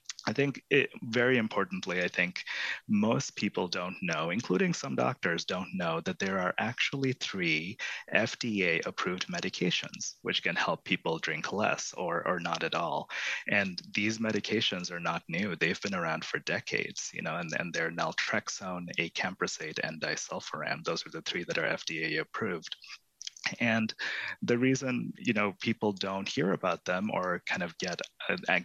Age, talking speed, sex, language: 30-49, 155 wpm, male, English